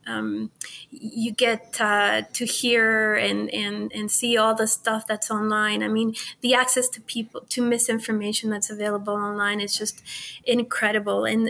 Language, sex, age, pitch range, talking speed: English, female, 20-39, 215-235 Hz, 155 wpm